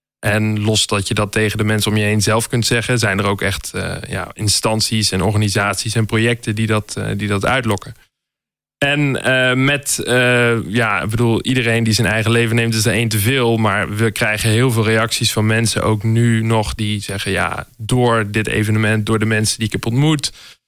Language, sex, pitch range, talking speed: Dutch, male, 105-125 Hz, 210 wpm